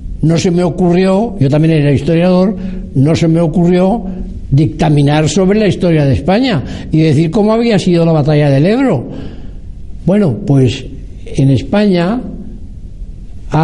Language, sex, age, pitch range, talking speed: Spanish, male, 60-79, 140-190 Hz, 140 wpm